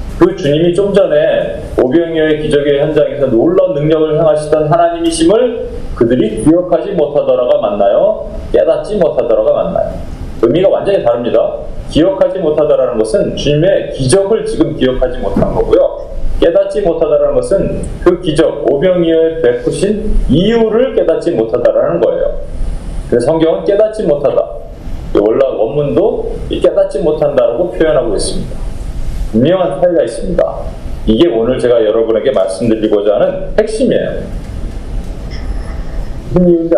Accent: native